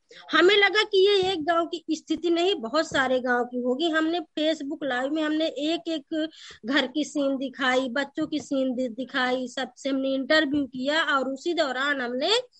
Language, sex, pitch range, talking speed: Hindi, female, 260-330 Hz, 175 wpm